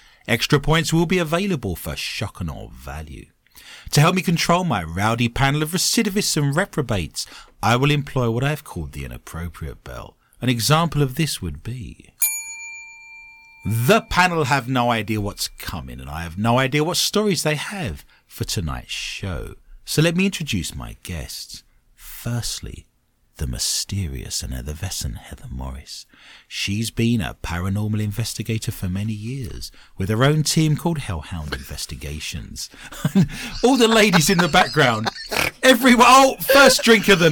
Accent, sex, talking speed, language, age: British, male, 155 wpm, English, 40-59